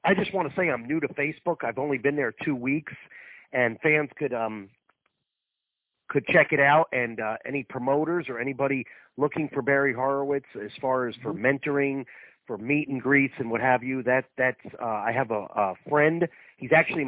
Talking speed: 195 wpm